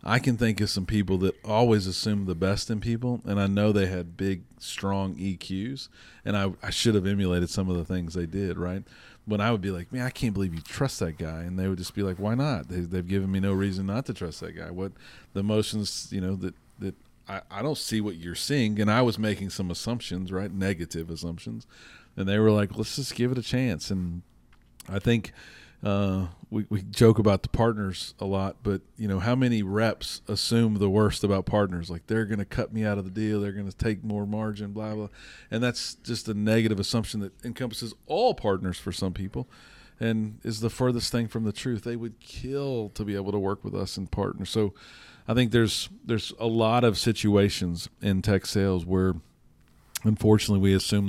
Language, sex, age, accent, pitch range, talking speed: English, male, 40-59, American, 95-115 Hz, 220 wpm